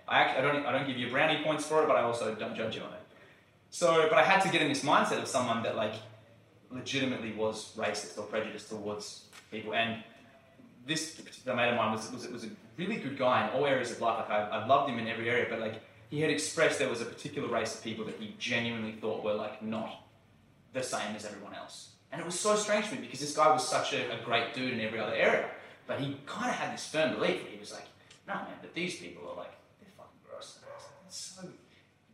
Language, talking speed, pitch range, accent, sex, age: English, 245 wpm, 110-135 Hz, Australian, male, 20-39